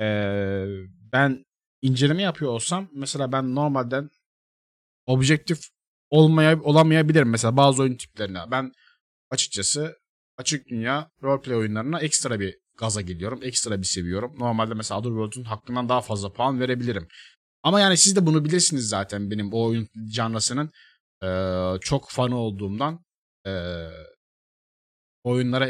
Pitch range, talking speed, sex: 110-155 Hz, 120 wpm, male